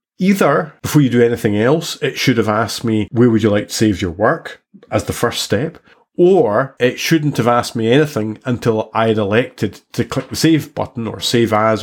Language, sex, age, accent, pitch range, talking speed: English, male, 30-49, British, 105-130 Hz, 215 wpm